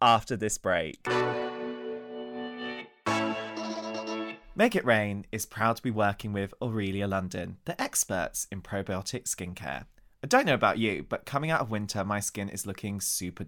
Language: English